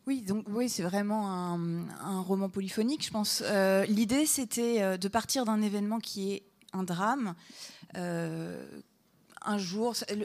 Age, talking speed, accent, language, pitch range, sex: 20-39, 150 wpm, French, French, 195-240 Hz, female